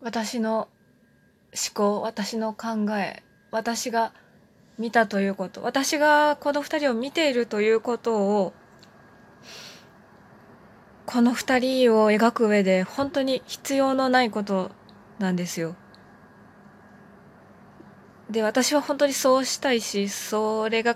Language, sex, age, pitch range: Japanese, female, 20-39, 210-265 Hz